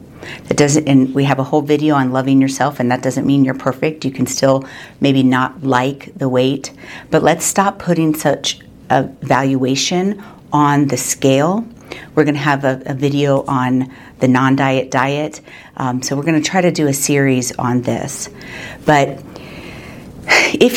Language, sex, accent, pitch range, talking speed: English, female, American, 130-150 Hz, 175 wpm